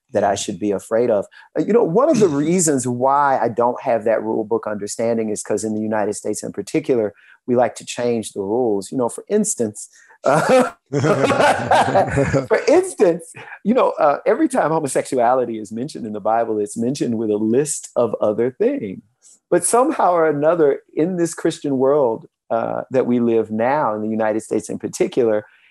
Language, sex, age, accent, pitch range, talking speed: English, male, 40-59, American, 105-160 Hz, 185 wpm